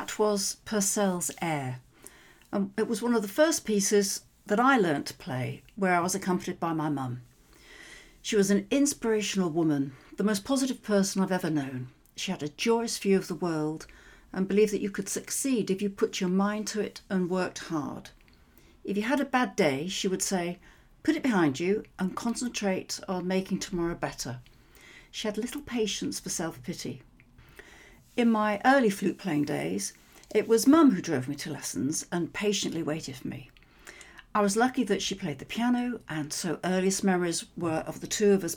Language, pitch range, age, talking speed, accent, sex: English, 170-215 Hz, 60-79, 190 wpm, British, female